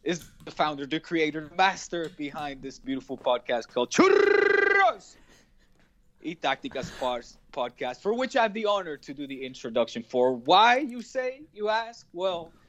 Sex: male